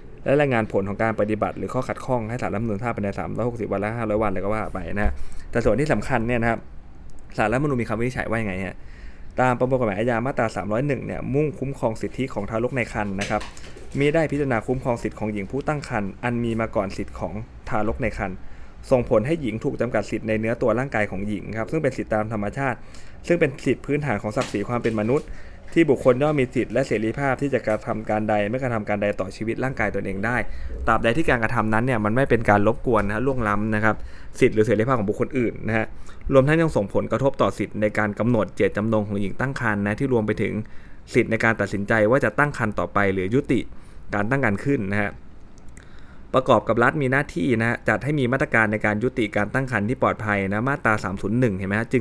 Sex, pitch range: male, 105-125 Hz